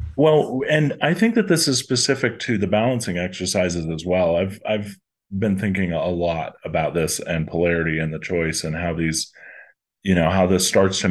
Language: English